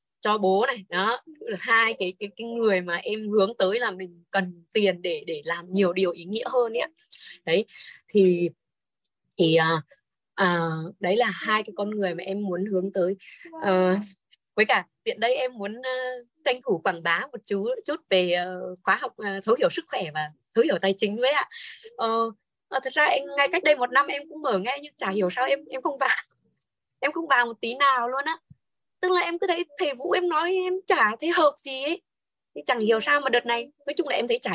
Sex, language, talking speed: female, Vietnamese, 230 wpm